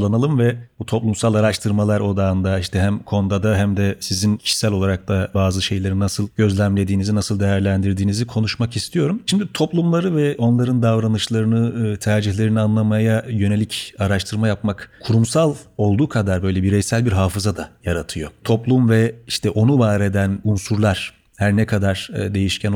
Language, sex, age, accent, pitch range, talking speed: Turkish, male, 40-59, native, 100-120 Hz, 135 wpm